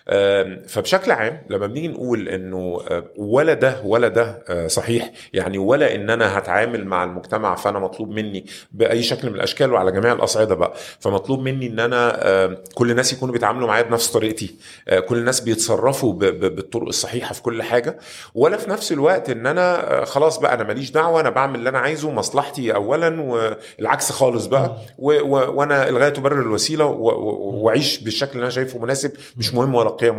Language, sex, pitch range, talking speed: Arabic, male, 110-145 Hz, 175 wpm